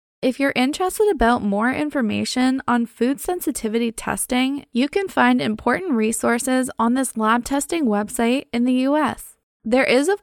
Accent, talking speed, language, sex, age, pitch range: American, 155 wpm, English, female, 10-29, 225-270 Hz